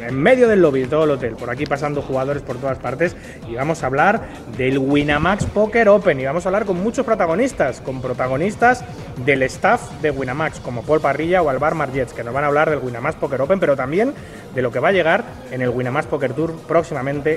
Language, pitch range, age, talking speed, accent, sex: Spanish, 135-185 Hz, 30-49, 225 wpm, Spanish, male